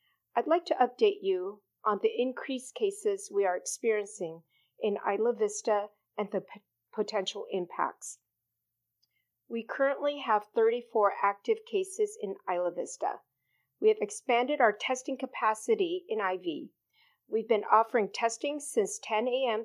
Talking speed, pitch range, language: 130 wpm, 200-315 Hz, English